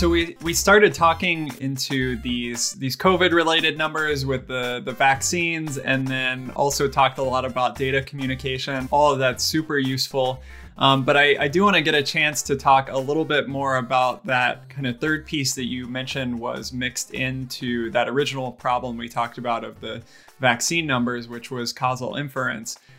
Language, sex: English, male